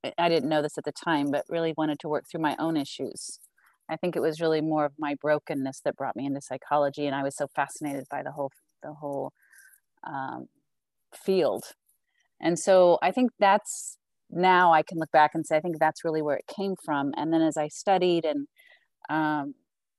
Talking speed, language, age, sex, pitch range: 205 wpm, English, 30-49, female, 145-175 Hz